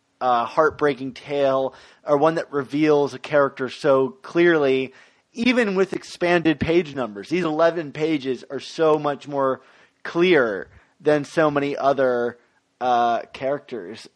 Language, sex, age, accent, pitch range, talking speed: English, male, 30-49, American, 135-165 Hz, 125 wpm